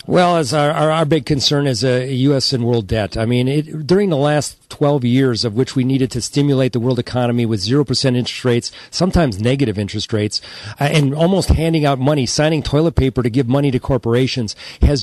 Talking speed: 210 wpm